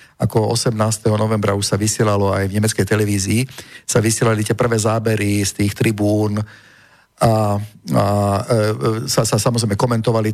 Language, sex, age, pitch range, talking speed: Slovak, male, 50-69, 105-125 Hz, 140 wpm